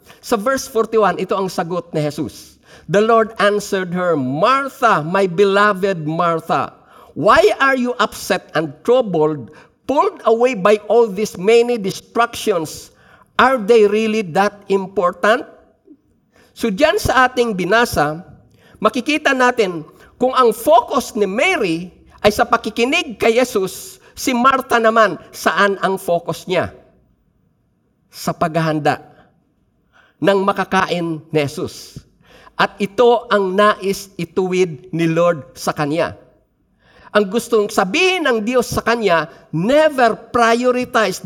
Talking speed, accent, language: 120 wpm, native, Filipino